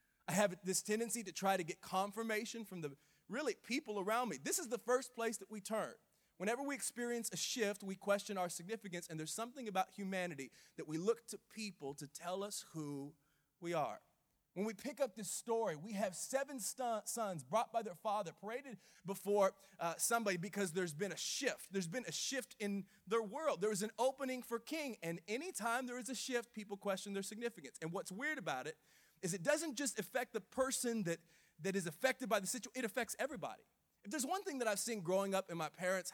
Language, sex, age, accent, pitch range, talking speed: English, male, 30-49, American, 180-235 Hz, 215 wpm